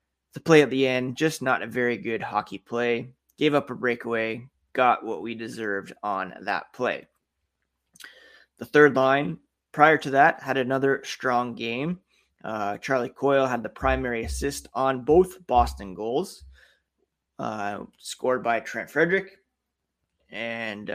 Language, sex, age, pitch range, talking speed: English, male, 20-39, 115-140 Hz, 145 wpm